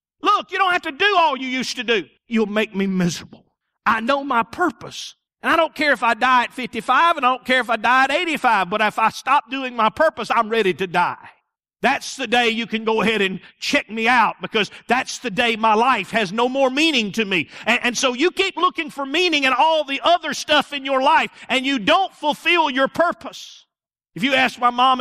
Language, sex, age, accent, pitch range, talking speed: English, male, 50-69, American, 160-260 Hz, 235 wpm